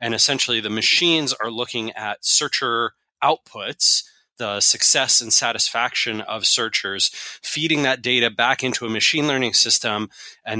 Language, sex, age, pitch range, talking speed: English, male, 20-39, 110-140 Hz, 140 wpm